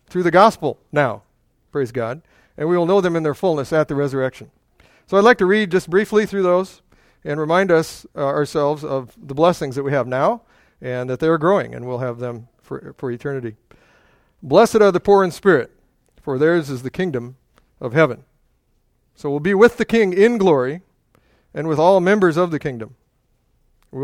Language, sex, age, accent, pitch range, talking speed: English, male, 50-69, American, 140-185 Hz, 195 wpm